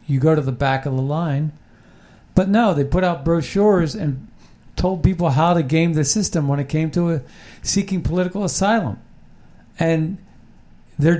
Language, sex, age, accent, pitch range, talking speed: English, male, 50-69, American, 145-180 Hz, 165 wpm